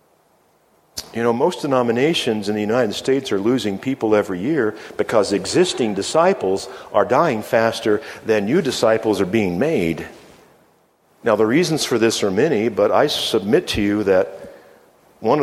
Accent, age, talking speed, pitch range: American, 50-69, 150 wpm, 100-125 Hz